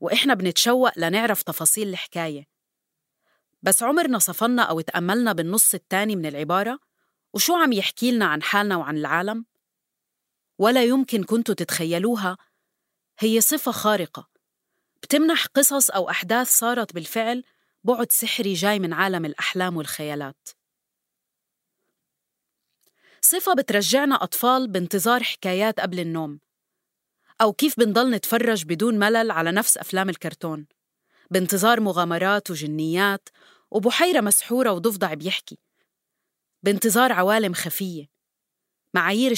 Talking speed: 105 wpm